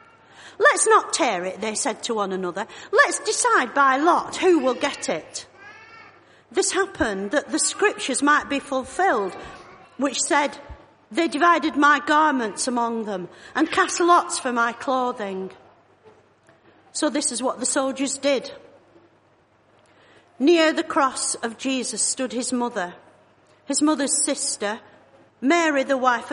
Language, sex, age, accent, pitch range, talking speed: English, female, 50-69, British, 230-305 Hz, 135 wpm